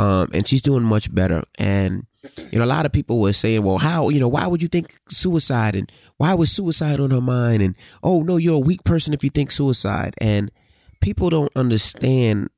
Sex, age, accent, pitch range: male, 30-49, American, 95-120 Hz